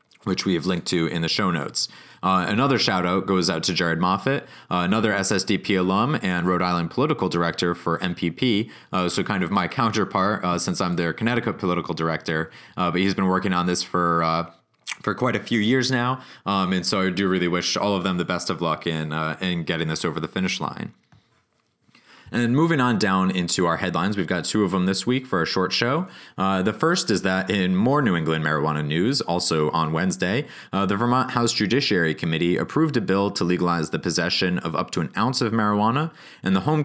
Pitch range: 85-105 Hz